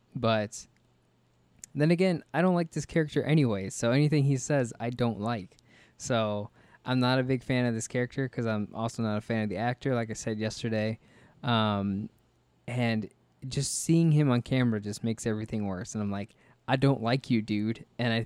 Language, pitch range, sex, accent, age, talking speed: English, 110-130 Hz, male, American, 20-39, 195 wpm